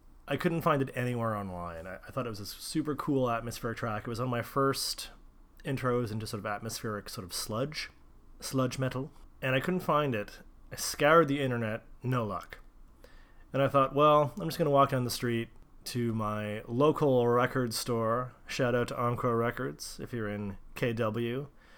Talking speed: 185 wpm